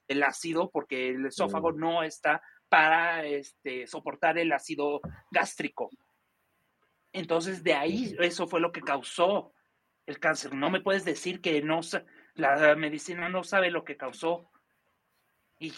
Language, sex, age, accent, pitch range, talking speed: Spanish, male, 40-59, Mexican, 155-185 Hz, 140 wpm